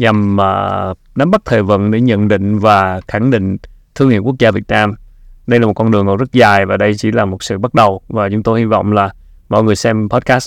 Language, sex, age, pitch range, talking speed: Vietnamese, male, 20-39, 105-130 Hz, 245 wpm